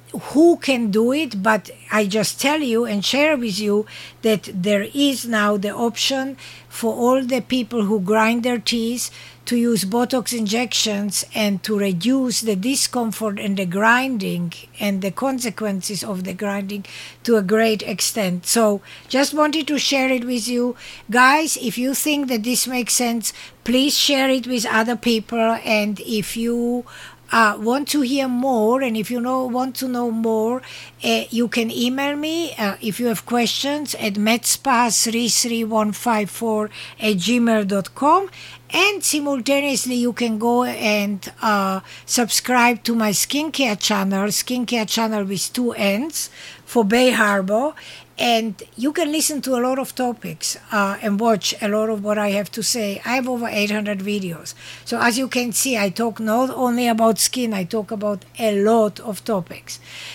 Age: 60-79